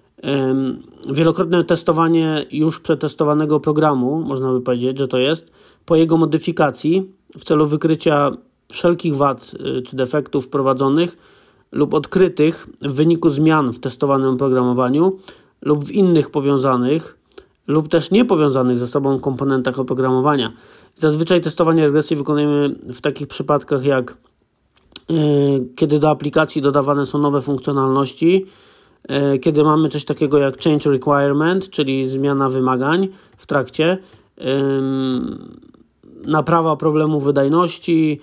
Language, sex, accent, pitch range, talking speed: Polish, male, native, 135-160 Hz, 110 wpm